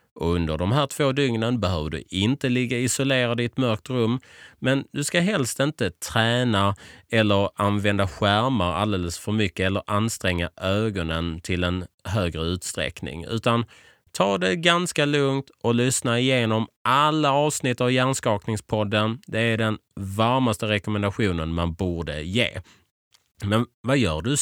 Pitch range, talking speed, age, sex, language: 90-125 Hz, 140 wpm, 30-49, male, Swedish